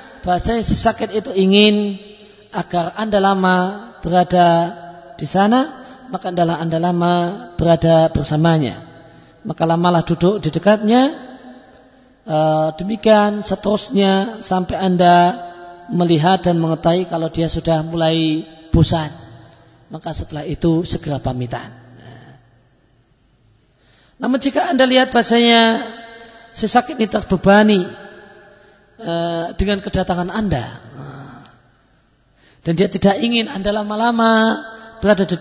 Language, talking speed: Indonesian, 100 wpm